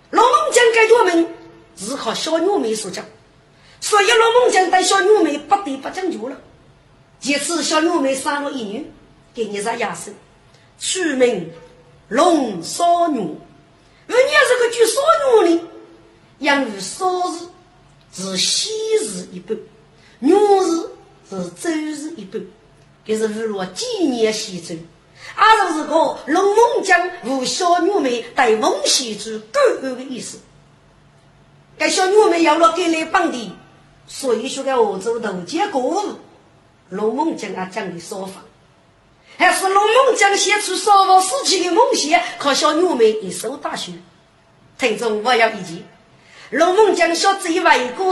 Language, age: Chinese, 50-69